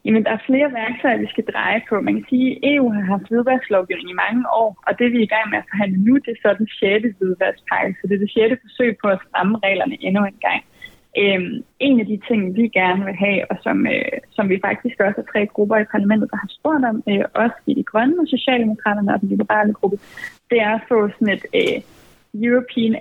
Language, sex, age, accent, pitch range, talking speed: Danish, female, 20-39, native, 200-240 Hz, 245 wpm